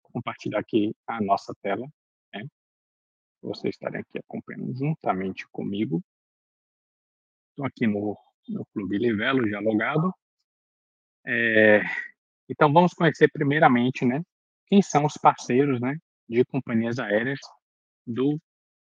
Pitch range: 105-135 Hz